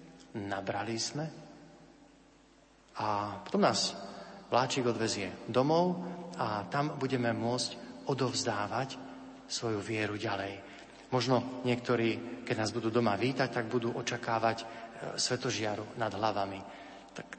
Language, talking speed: Slovak, 105 wpm